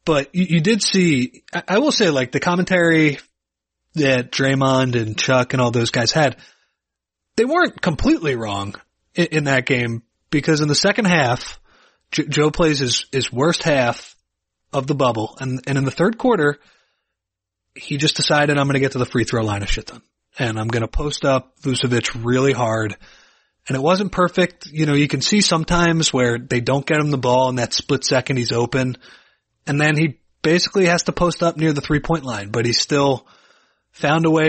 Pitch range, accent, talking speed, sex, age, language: 120-155 Hz, American, 190 wpm, male, 30-49, English